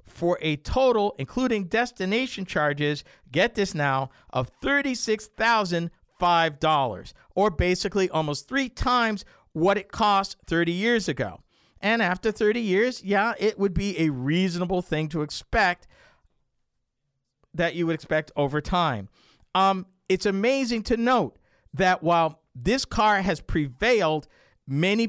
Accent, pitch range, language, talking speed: American, 145-200 Hz, English, 125 wpm